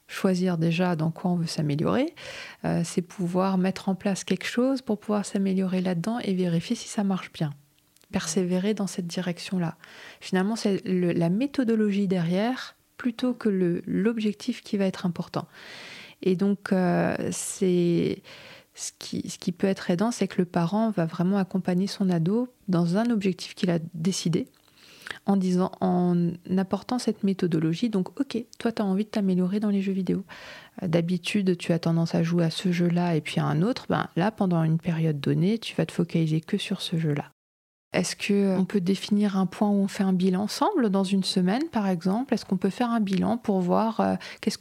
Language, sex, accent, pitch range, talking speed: French, female, French, 180-210 Hz, 190 wpm